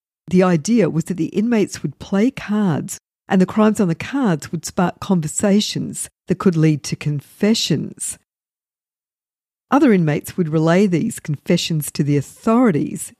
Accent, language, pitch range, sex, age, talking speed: Australian, English, 150-205 Hz, female, 50-69, 145 wpm